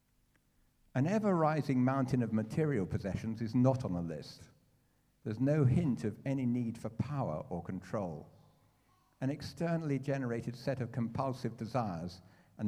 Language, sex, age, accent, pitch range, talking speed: English, male, 50-69, British, 115-145 Hz, 140 wpm